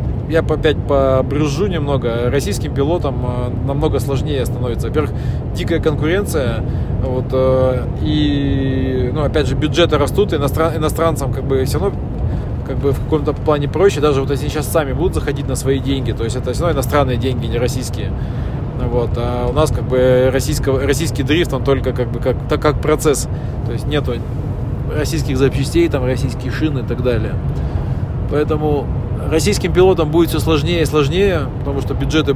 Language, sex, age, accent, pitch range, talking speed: Russian, male, 20-39, native, 120-145 Hz, 165 wpm